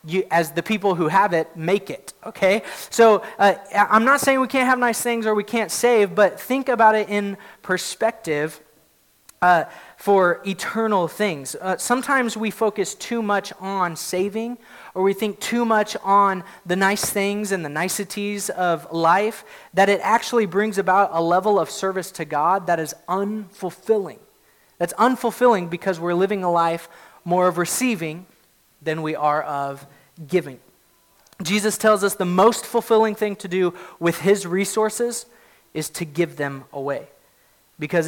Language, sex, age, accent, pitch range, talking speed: English, male, 30-49, American, 165-215 Hz, 160 wpm